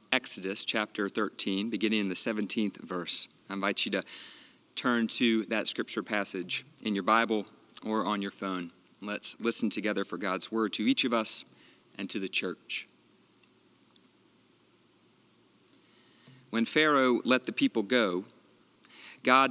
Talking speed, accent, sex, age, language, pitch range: 140 wpm, American, male, 40-59, English, 105-125 Hz